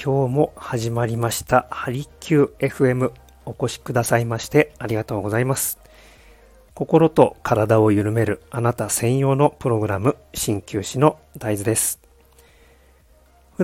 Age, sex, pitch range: 40-59, male, 80-130 Hz